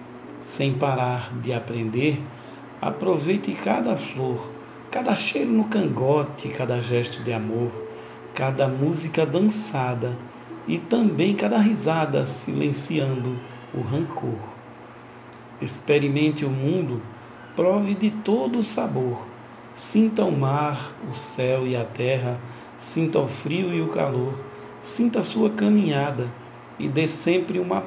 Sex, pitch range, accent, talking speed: male, 120-160 Hz, Brazilian, 120 wpm